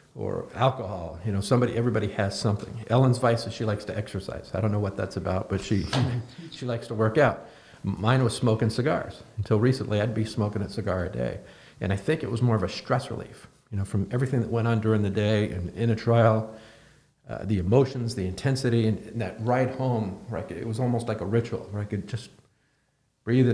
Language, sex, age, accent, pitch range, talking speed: English, male, 50-69, American, 100-115 Hz, 215 wpm